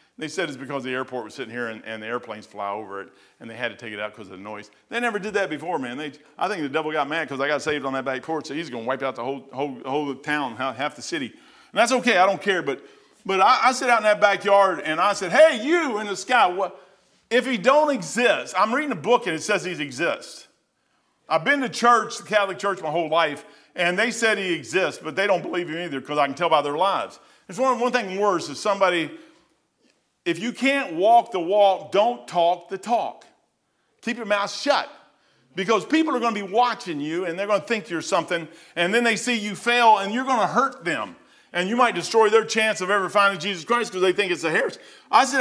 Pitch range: 160-235 Hz